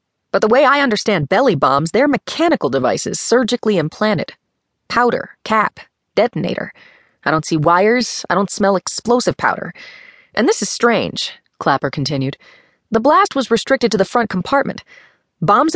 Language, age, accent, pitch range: English, 30-49, American, 155-225 Hz